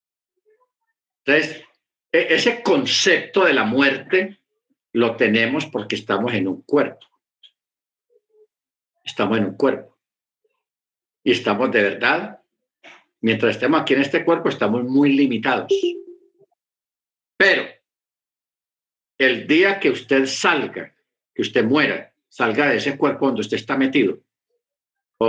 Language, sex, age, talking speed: Spanish, male, 50-69, 115 wpm